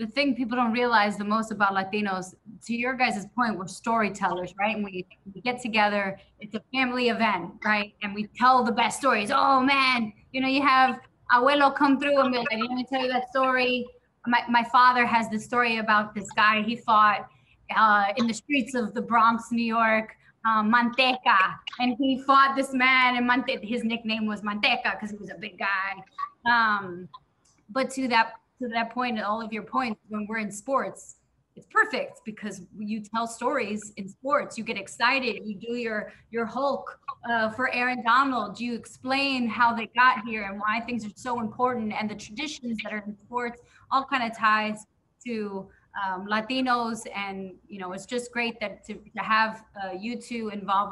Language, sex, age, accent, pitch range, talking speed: English, female, 20-39, American, 210-250 Hz, 190 wpm